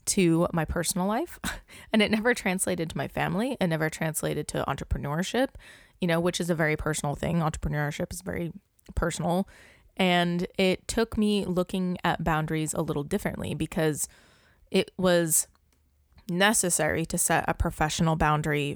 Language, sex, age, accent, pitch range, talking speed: English, female, 20-39, American, 160-190 Hz, 150 wpm